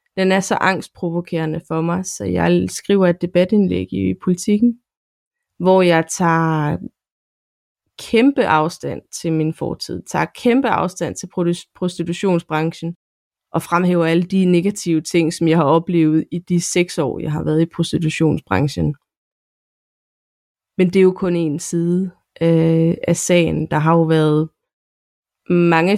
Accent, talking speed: native, 140 wpm